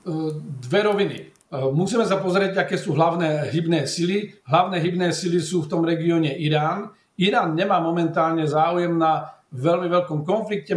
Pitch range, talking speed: 145-175 Hz, 145 wpm